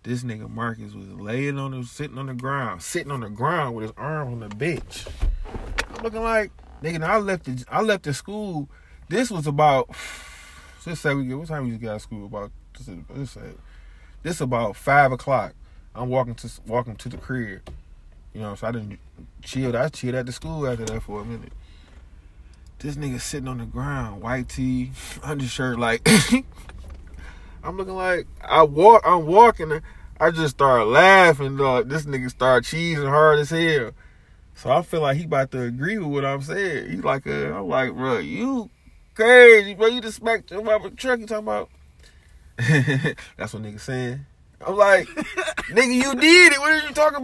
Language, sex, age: English, male, 20-39